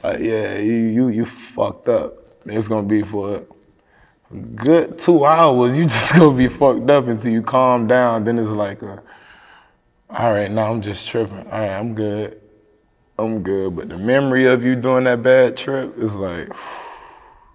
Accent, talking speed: American, 185 wpm